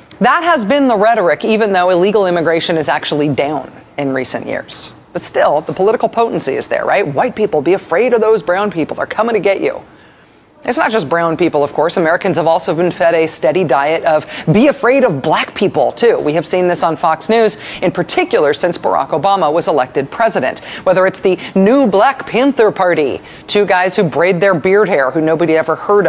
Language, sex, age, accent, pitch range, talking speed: English, female, 40-59, American, 170-250 Hz, 210 wpm